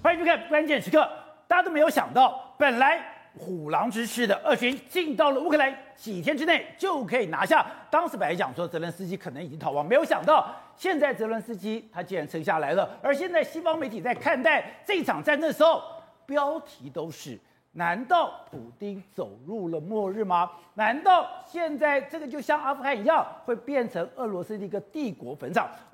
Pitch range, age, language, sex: 210-310 Hz, 50-69, Chinese, male